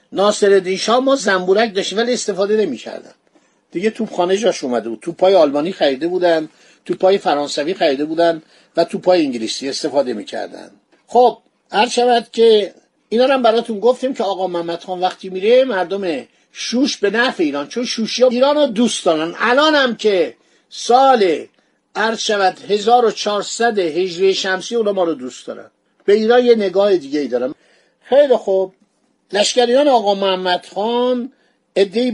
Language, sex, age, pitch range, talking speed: Persian, male, 50-69, 185-240 Hz, 140 wpm